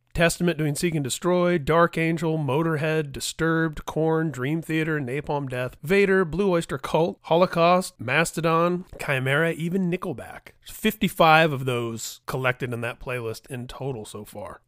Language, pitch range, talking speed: English, 135-170 Hz, 145 wpm